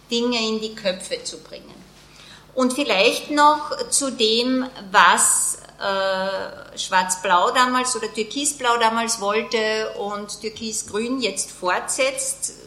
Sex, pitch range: female, 215-260 Hz